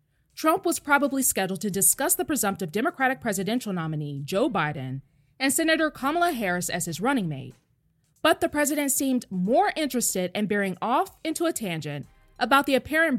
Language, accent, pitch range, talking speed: English, American, 185-295 Hz, 165 wpm